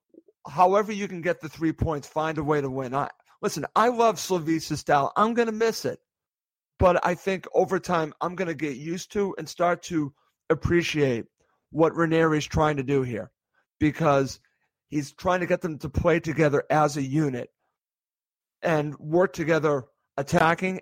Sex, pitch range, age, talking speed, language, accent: male, 150-175 Hz, 50-69, 170 wpm, English, American